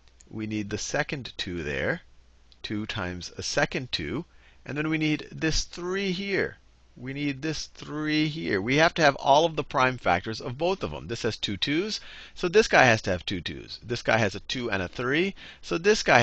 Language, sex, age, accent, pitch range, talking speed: English, male, 40-59, American, 90-135 Hz, 220 wpm